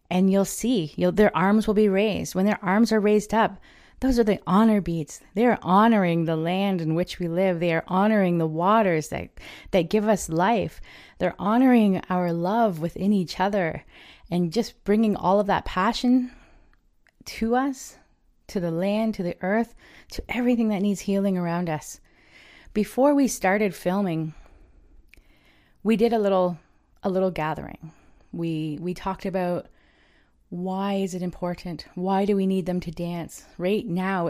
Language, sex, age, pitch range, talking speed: English, female, 20-39, 170-205 Hz, 170 wpm